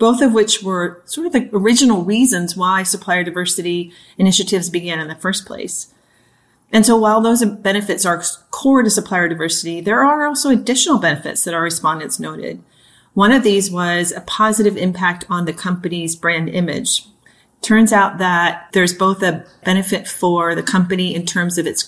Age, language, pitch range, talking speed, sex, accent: 40-59, English, 175-210 Hz, 175 wpm, female, American